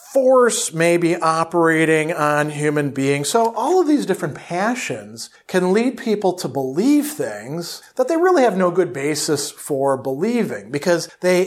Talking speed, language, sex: 155 wpm, English, male